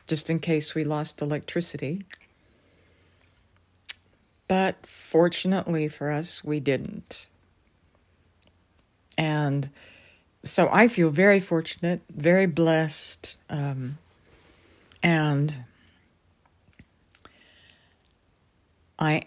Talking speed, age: 70 wpm, 60-79